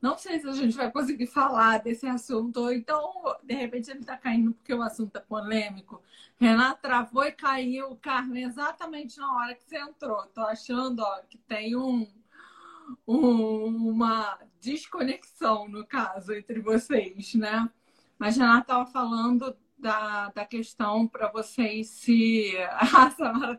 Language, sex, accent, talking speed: Portuguese, female, Brazilian, 155 wpm